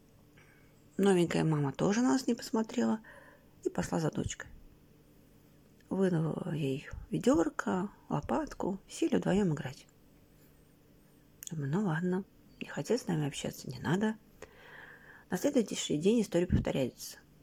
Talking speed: 110 wpm